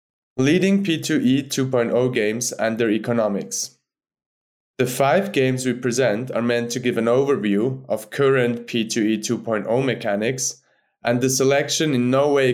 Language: English